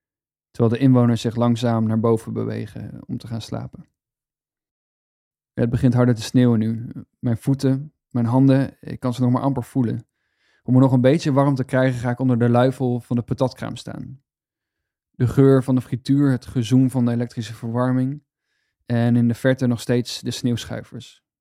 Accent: Dutch